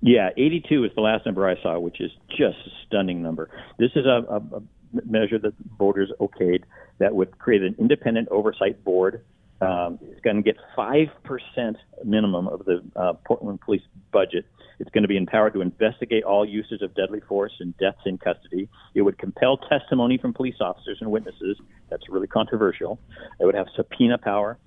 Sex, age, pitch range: male, 50-69, 100-130 Hz